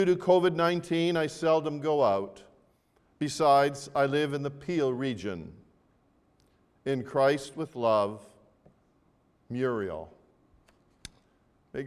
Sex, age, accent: male, 50-69, American